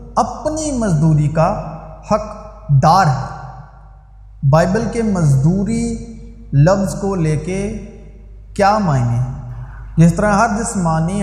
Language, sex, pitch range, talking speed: Urdu, male, 140-180 Hz, 105 wpm